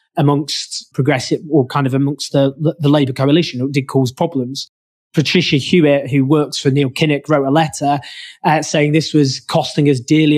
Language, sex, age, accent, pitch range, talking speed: English, male, 20-39, British, 135-160 Hz, 185 wpm